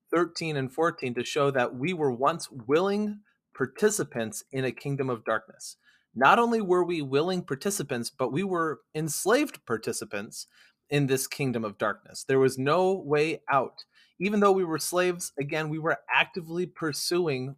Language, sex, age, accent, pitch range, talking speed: English, male, 30-49, American, 125-160 Hz, 160 wpm